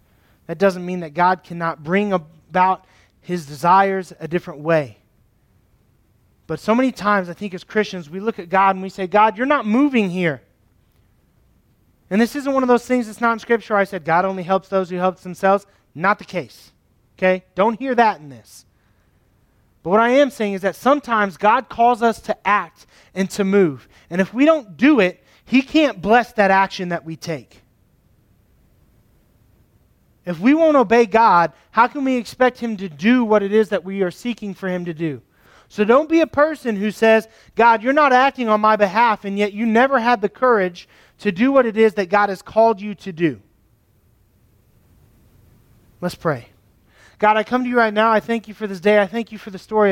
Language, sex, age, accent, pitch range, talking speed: English, male, 20-39, American, 160-225 Hz, 205 wpm